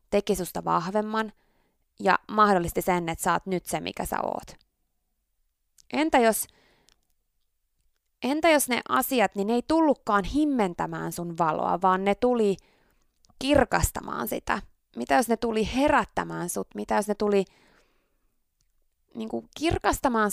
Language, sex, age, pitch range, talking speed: Finnish, female, 20-39, 180-265 Hz, 130 wpm